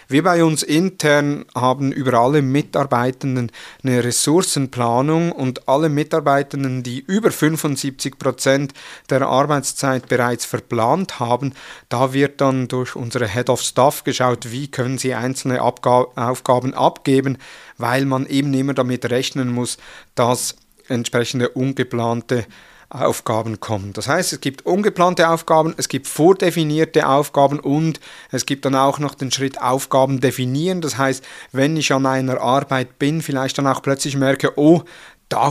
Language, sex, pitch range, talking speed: German, male, 125-145 Hz, 140 wpm